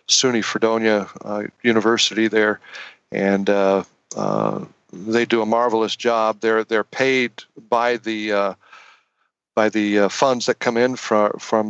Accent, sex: American, male